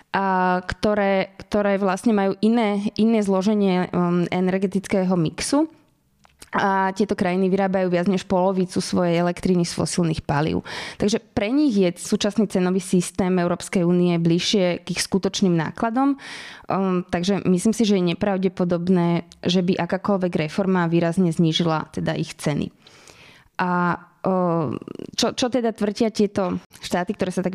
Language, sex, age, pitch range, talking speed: Slovak, female, 20-39, 175-200 Hz, 135 wpm